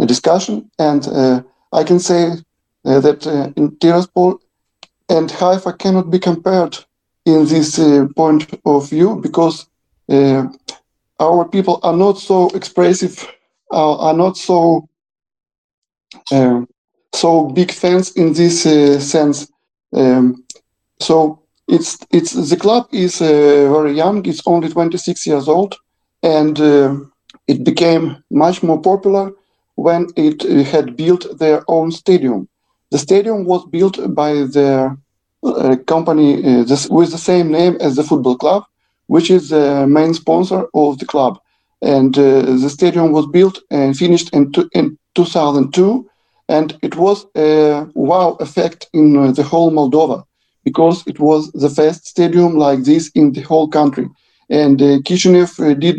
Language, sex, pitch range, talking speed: Hebrew, male, 145-180 Hz, 150 wpm